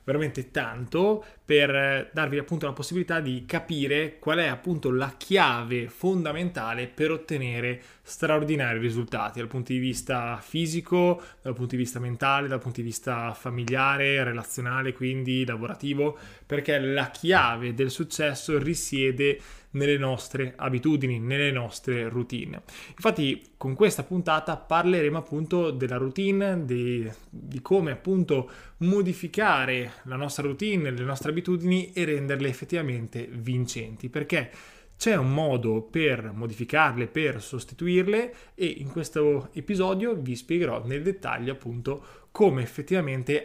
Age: 20-39